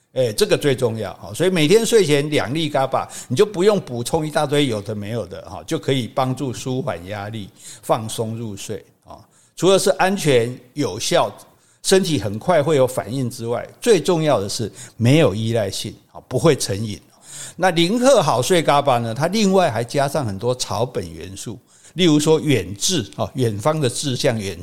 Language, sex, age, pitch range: Chinese, male, 60-79, 115-160 Hz